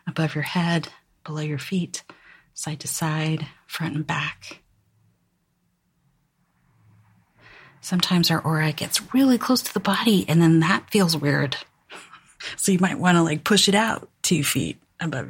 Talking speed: 150 wpm